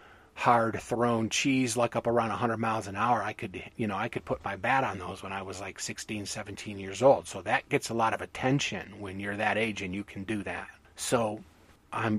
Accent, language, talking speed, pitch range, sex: American, English, 230 wpm, 100-130 Hz, male